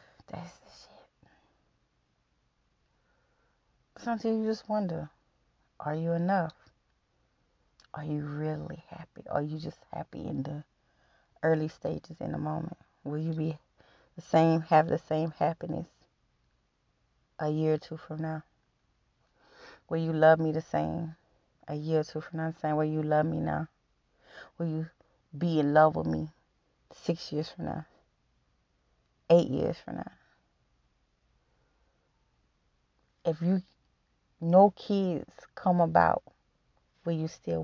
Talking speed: 135 wpm